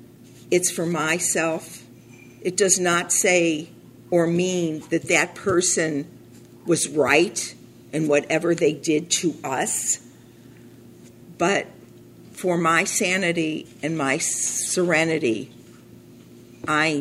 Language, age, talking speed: English, 50-69, 100 wpm